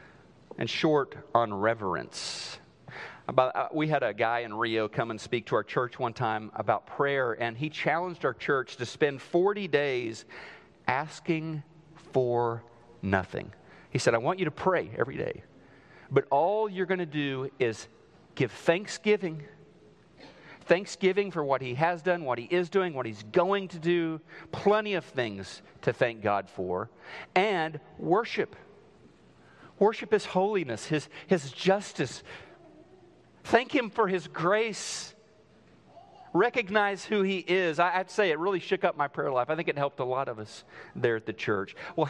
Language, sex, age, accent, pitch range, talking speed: English, male, 50-69, American, 130-190 Hz, 160 wpm